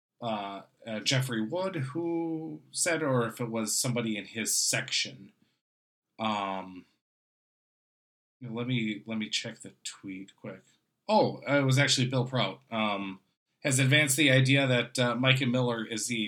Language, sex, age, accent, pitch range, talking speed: English, male, 20-39, American, 110-135 Hz, 155 wpm